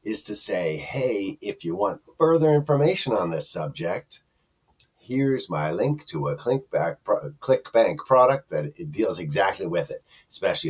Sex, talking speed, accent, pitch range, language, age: male, 145 wpm, American, 105-160 Hz, English, 50-69